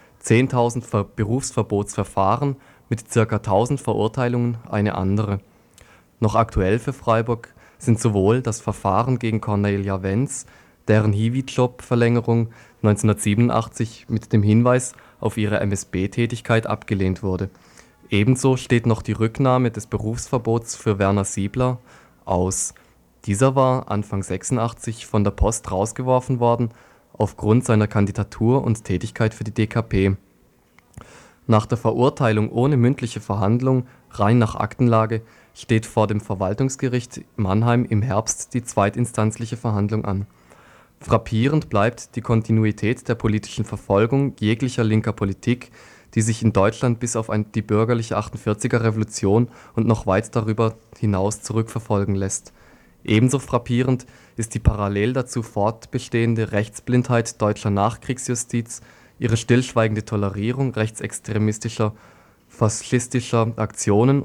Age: 20-39